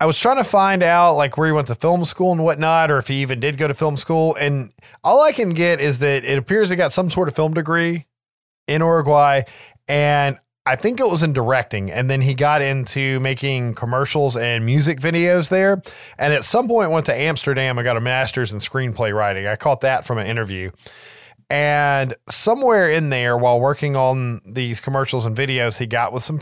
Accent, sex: American, male